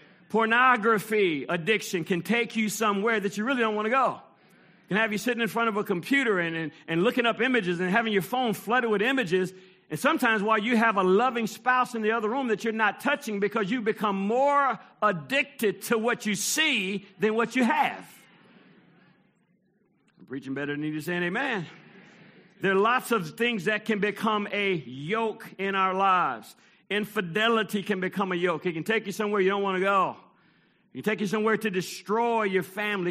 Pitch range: 175-220 Hz